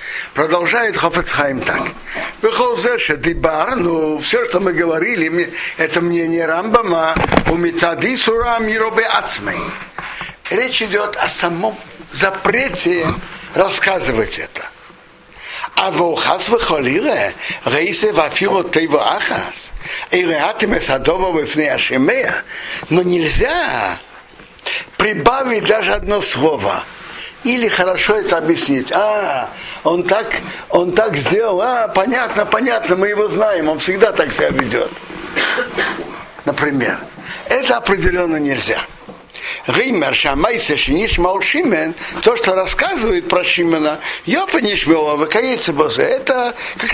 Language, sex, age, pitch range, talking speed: Russian, male, 60-79, 170-235 Hz, 80 wpm